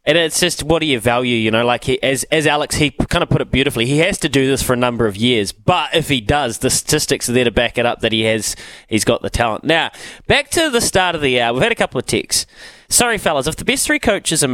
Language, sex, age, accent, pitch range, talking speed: English, male, 20-39, Australian, 110-145 Hz, 295 wpm